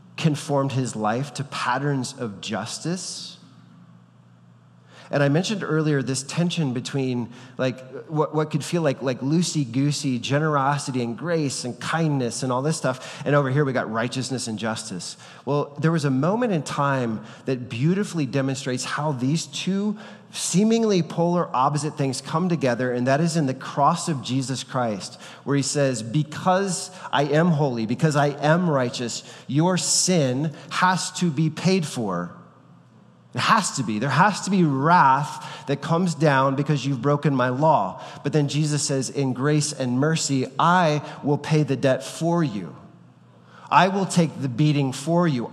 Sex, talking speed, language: male, 165 wpm, English